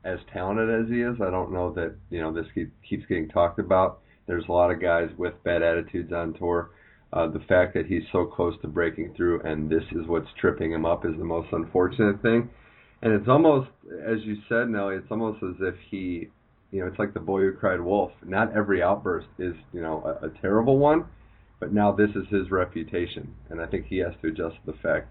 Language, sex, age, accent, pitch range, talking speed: English, male, 30-49, American, 85-110 Hz, 225 wpm